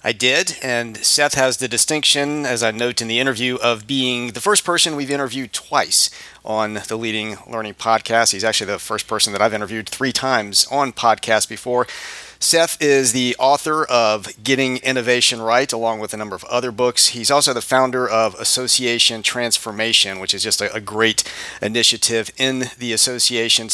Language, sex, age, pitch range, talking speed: English, male, 40-59, 115-130 Hz, 180 wpm